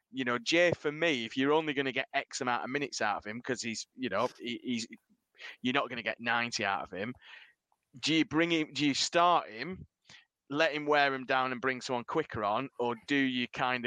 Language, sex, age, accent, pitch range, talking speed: English, male, 20-39, British, 115-135 Hz, 240 wpm